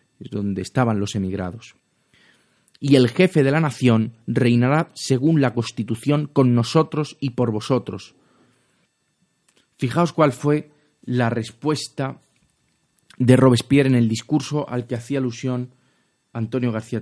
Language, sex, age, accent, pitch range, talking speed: Spanish, male, 30-49, Spanish, 115-155 Hz, 125 wpm